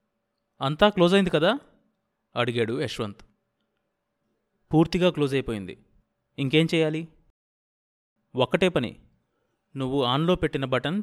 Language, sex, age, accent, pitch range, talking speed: Telugu, male, 30-49, native, 110-135 Hz, 90 wpm